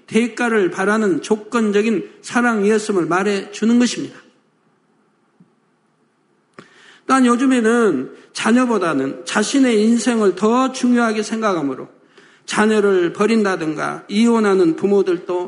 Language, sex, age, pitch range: Korean, male, 50-69, 200-250 Hz